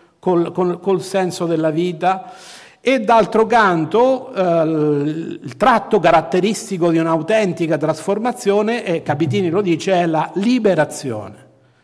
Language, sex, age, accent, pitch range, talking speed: Italian, male, 50-69, native, 170-235 Hz, 105 wpm